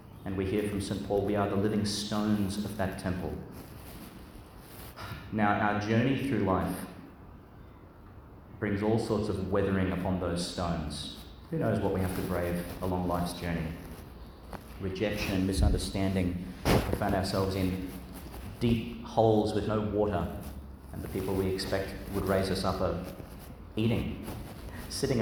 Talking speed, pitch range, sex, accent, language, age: 140 wpm, 90-105 Hz, male, Australian, English, 30-49